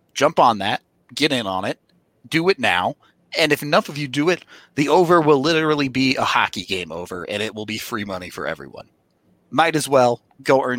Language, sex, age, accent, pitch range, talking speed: English, male, 30-49, American, 115-155 Hz, 215 wpm